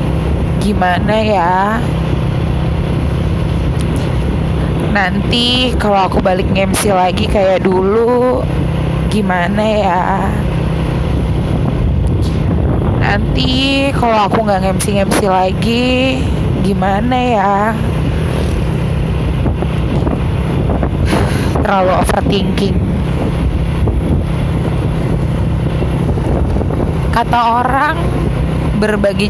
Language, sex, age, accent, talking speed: Indonesian, female, 20-39, native, 50 wpm